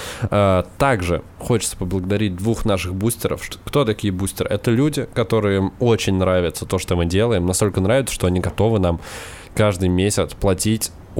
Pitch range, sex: 90-105 Hz, male